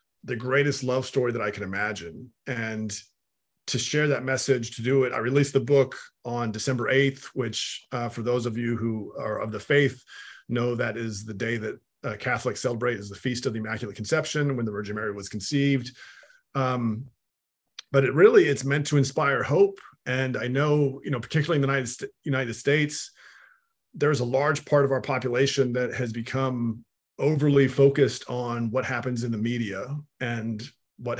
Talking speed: 185 wpm